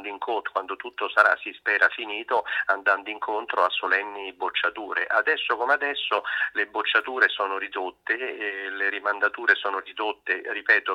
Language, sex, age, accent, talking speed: Italian, male, 40-59, native, 145 wpm